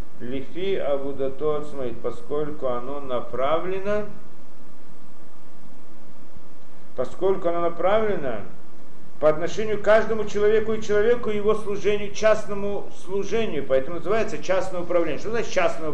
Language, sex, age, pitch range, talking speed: Russian, male, 50-69, 150-225 Hz, 100 wpm